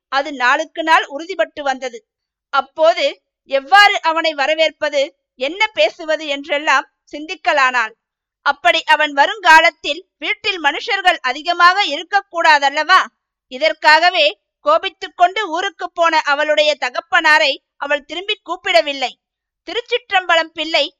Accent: native